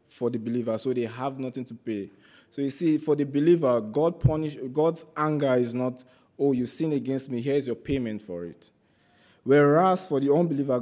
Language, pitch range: English, 105-140 Hz